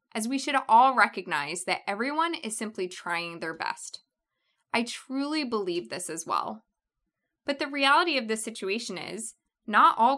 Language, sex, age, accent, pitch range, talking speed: English, female, 20-39, American, 195-275 Hz, 160 wpm